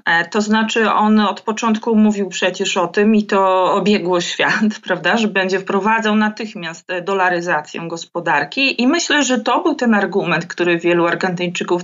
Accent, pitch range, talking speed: native, 175-215 Hz, 145 wpm